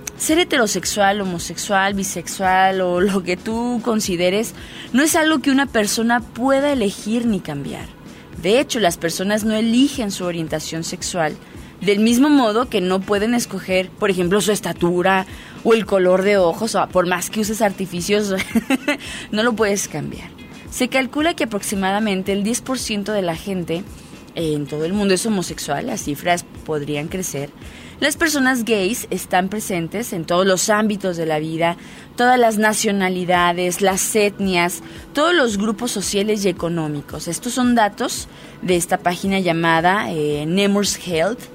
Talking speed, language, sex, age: 155 wpm, Spanish, female, 20-39